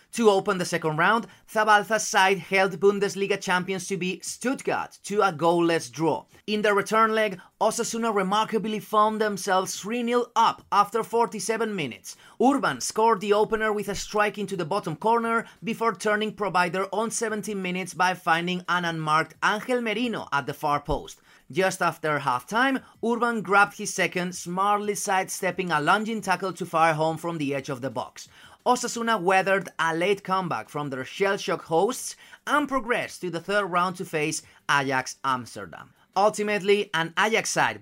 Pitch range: 175-215 Hz